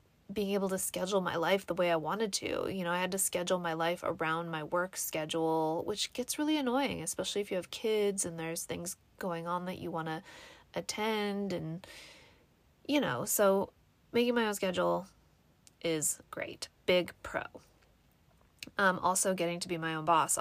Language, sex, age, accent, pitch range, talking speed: English, female, 20-39, American, 170-230 Hz, 180 wpm